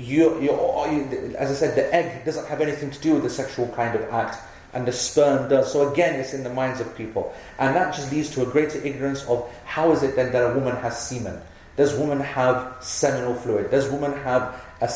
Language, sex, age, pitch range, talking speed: English, male, 30-49, 125-150 Hz, 230 wpm